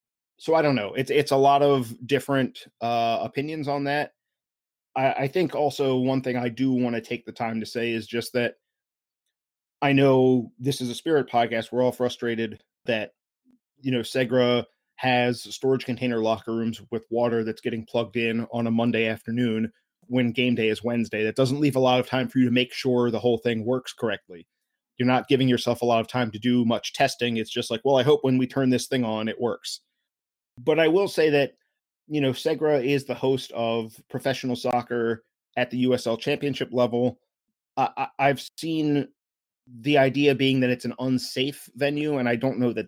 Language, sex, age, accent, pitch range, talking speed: English, male, 20-39, American, 115-135 Hz, 200 wpm